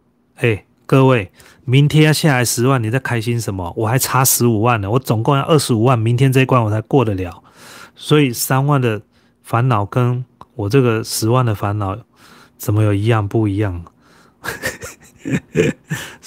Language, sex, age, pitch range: Chinese, male, 30-49, 110-130 Hz